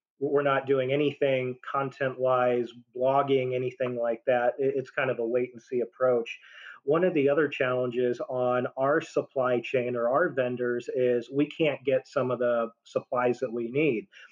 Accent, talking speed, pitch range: American, 160 wpm, 125-140 Hz